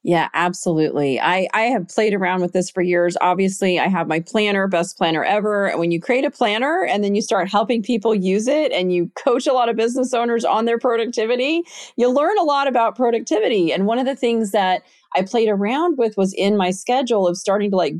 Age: 30-49